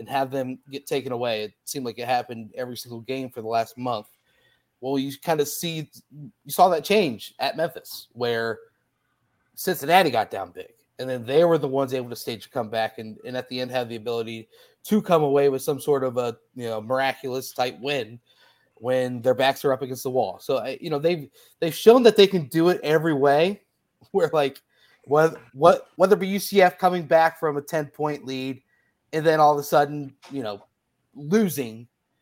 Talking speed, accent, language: 205 wpm, American, English